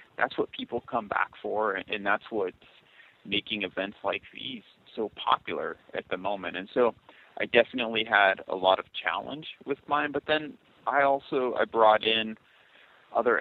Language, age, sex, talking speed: English, 30-49, male, 165 wpm